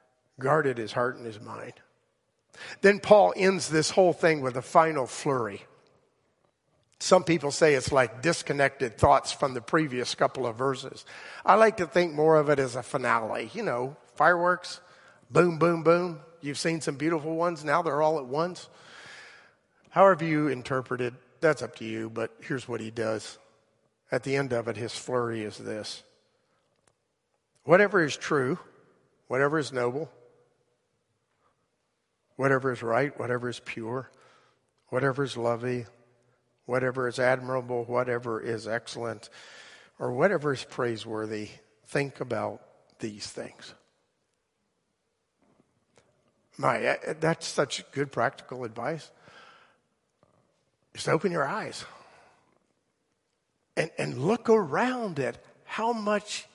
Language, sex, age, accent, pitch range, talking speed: English, male, 50-69, American, 120-165 Hz, 130 wpm